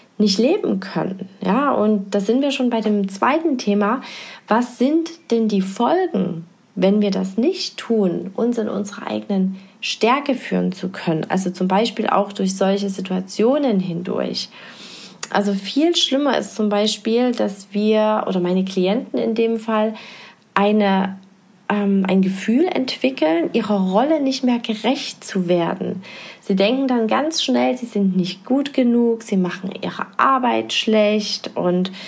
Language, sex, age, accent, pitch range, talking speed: German, female, 30-49, German, 195-235 Hz, 150 wpm